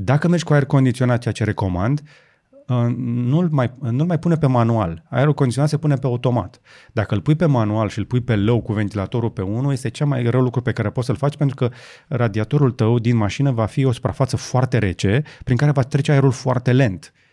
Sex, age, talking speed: male, 30-49, 220 wpm